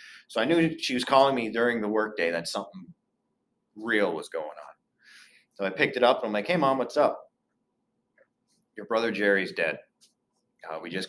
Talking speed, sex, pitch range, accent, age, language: 195 wpm, male, 100-145 Hz, American, 30-49, English